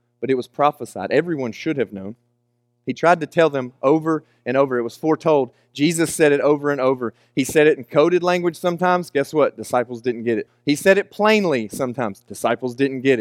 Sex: male